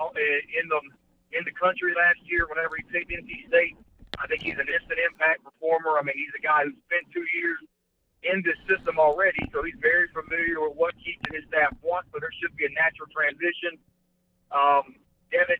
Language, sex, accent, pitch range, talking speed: English, male, American, 150-220 Hz, 200 wpm